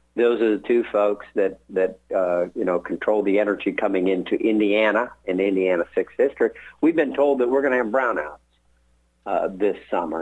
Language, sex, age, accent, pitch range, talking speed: English, male, 50-69, American, 95-125 Hz, 195 wpm